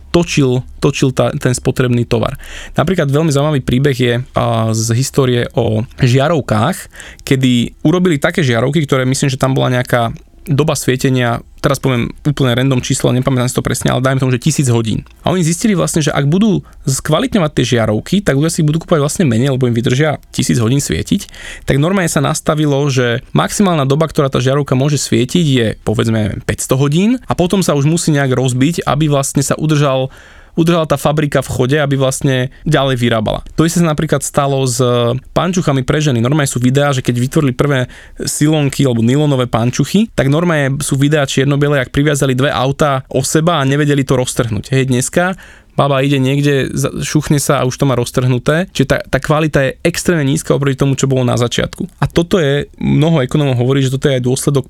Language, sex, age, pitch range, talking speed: Slovak, male, 20-39, 125-155 Hz, 190 wpm